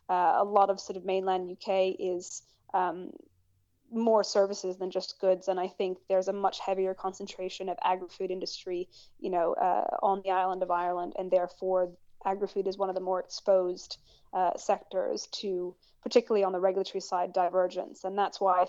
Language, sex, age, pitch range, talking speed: English, female, 20-39, 185-200 Hz, 180 wpm